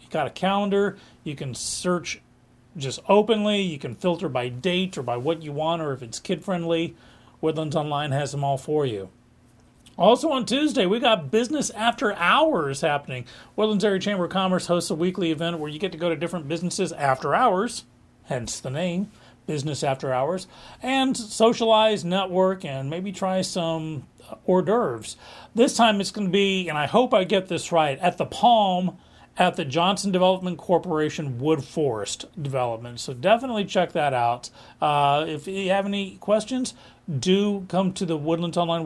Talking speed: 175 wpm